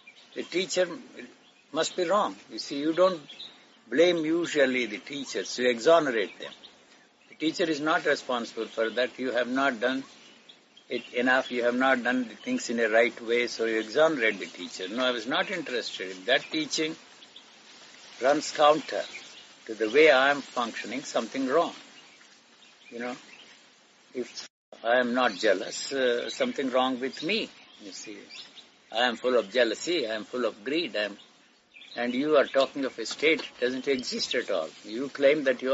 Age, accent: 60-79, Indian